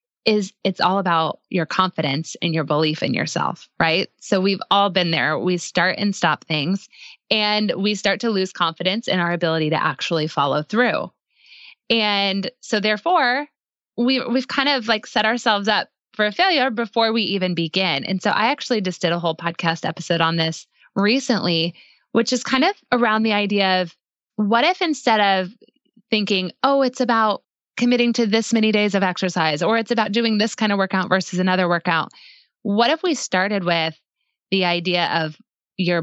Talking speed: 180 wpm